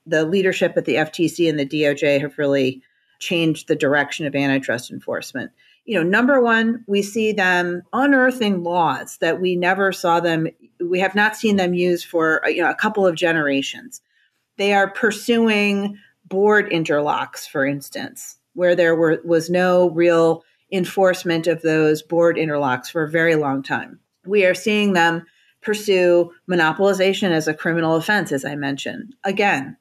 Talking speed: 160 wpm